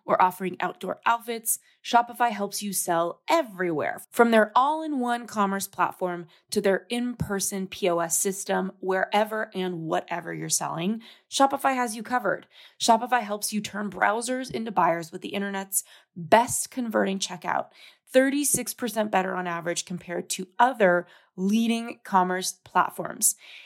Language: English